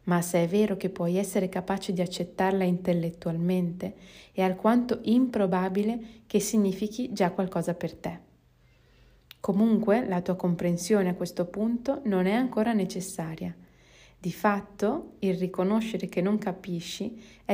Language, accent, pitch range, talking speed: Italian, native, 175-205 Hz, 135 wpm